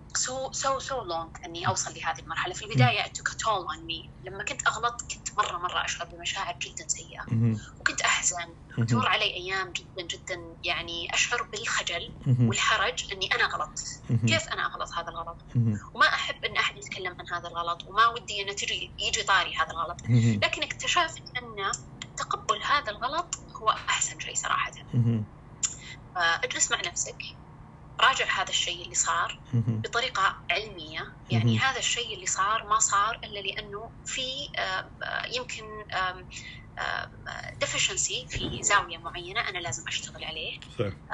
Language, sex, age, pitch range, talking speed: English, female, 20-39, 135-205 Hz, 140 wpm